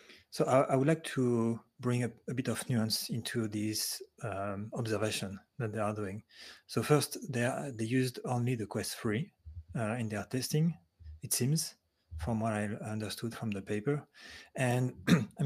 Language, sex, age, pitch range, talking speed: English, male, 30-49, 105-120 Hz, 170 wpm